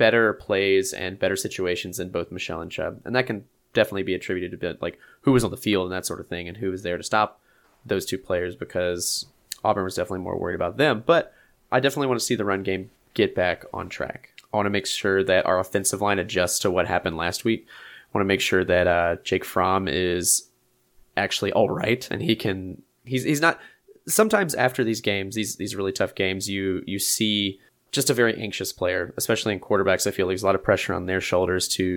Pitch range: 90-105 Hz